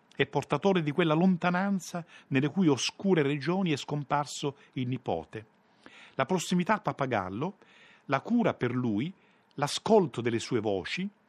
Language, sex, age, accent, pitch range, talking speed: Italian, male, 50-69, native, 130-180 Hz, 135 wpm